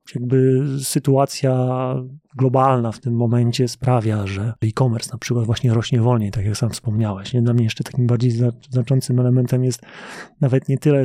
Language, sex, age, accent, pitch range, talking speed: Polish, male, 30-49, native, 120-135 Hz, 155 wpm